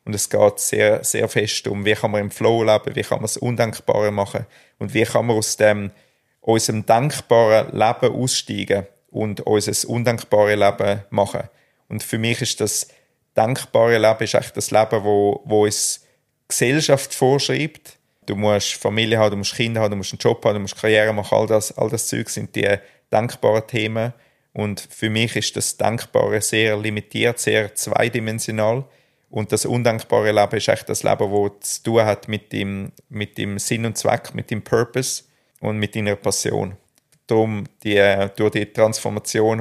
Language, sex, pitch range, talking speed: German, male, 105-120 Hz, 180 wpm